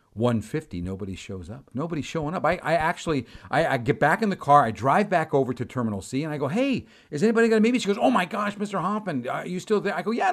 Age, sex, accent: 50-69, male, American